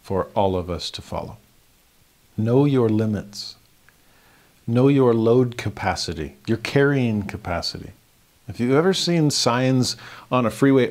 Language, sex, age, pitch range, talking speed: English, male, 50-69, 105-130 Hz, 130 wpm